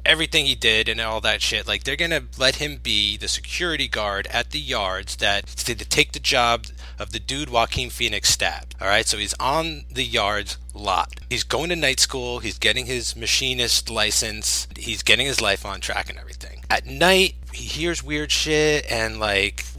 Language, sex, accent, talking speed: English, male, American, 195 wpm